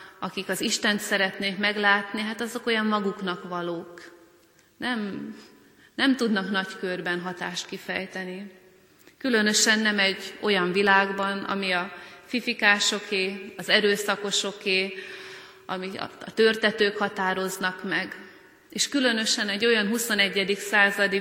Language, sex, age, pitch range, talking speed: Hungarian, female, 30-49, 185-210 Hz, 110 wpm